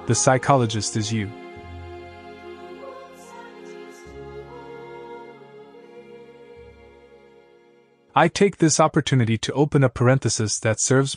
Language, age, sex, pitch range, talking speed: Italian, 30-49, male, 115-140 Hz, 75 wpm